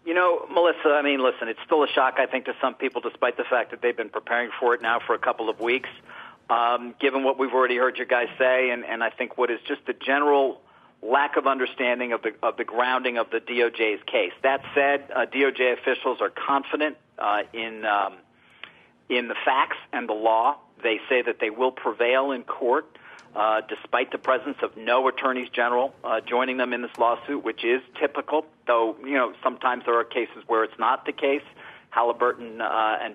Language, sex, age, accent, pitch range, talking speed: English, male, 40-59, American, 115-140 Hz, 210 wpm